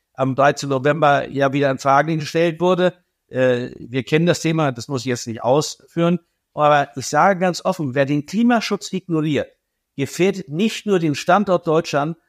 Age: 60-79